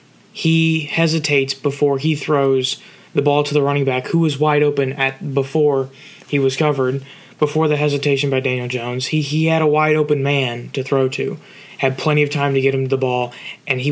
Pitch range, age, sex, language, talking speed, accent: 130-150 Hz, 20-39, male, English, 205 wpm, American